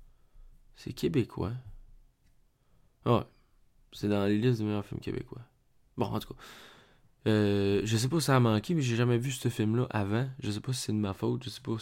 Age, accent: 20-39, French